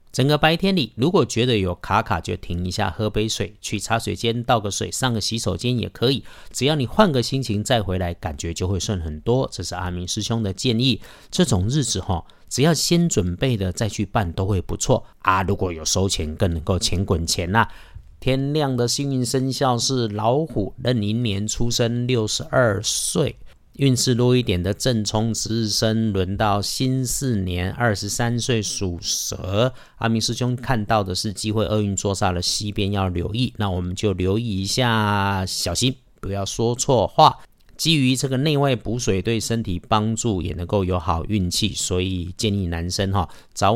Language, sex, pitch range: Chinese, male, 95-120 Hz